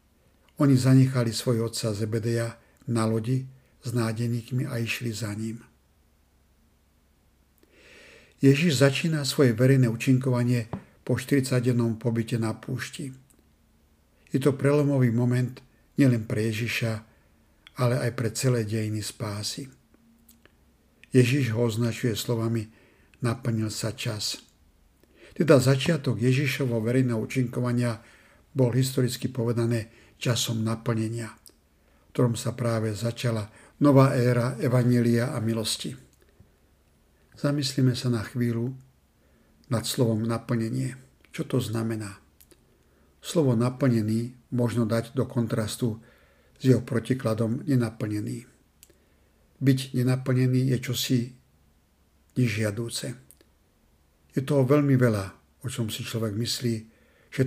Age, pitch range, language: 60-79, 105-130 Hz, Slovak